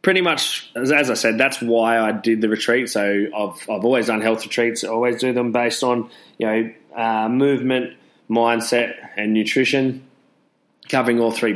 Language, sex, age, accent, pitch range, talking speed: English, male, 20-39, Australian, 105-120 Hz, 180 wpm